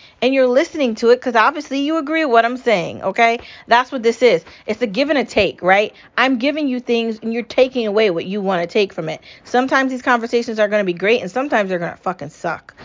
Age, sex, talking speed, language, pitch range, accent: 30-49, female, 255 wpm, English, 185-240 Hz, American